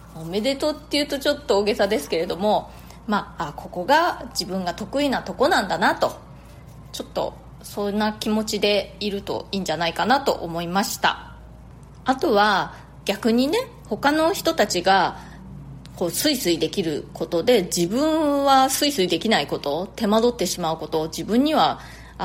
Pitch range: 175-270 Hz